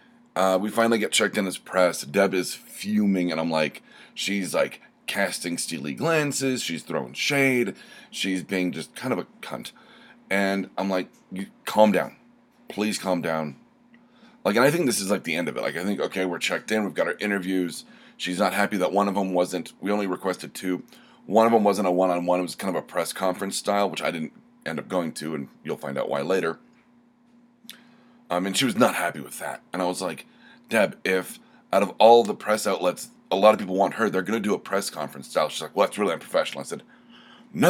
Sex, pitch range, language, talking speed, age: male, 90-145 Hz, English, 225 wpm, 30-49